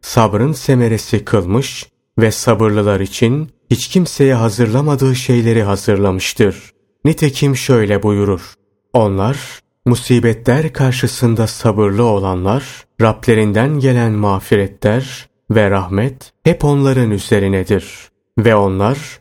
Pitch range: 105-130 Hz